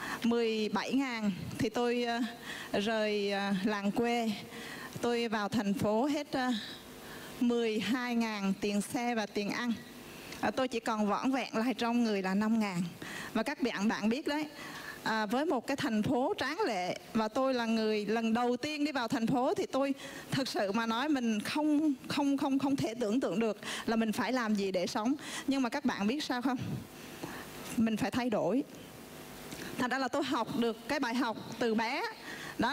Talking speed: 180 wpm